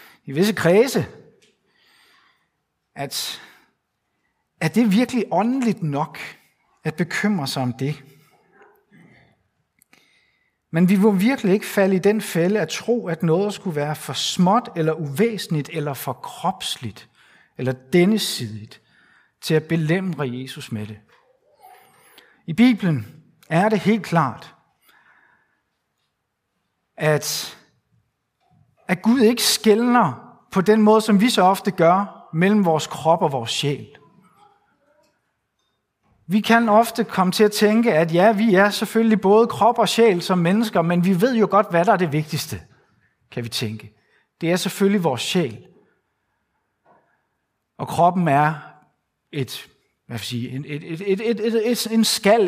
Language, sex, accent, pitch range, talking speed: Danish, male, native, 155-220 Hz, 125 wpm